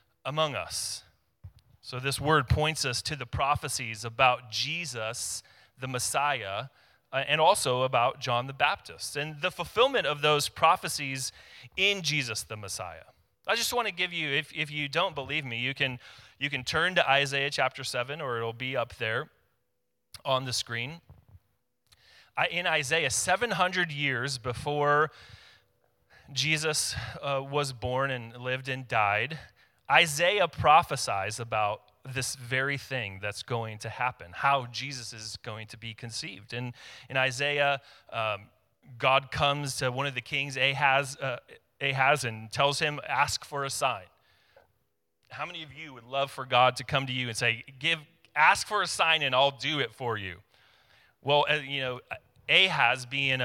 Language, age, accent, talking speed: English, 30-49, American, 160 wpm